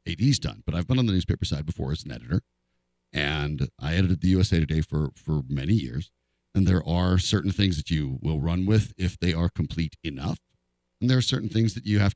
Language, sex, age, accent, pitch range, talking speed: English, male, 50-69, American, 75-110 Hz, 225 wpm